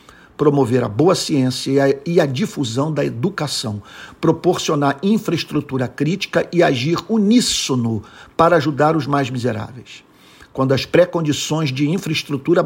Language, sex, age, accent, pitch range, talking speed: Portuguese, male, 50-69, Brazilian, 130-165 Hz, 125 wpm